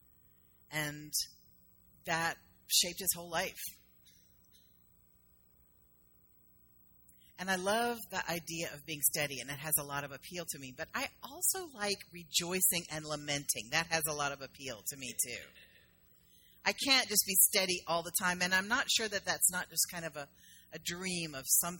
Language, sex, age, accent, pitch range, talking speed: English, female, 40-59, American, 140-200 Hz, 170 wpm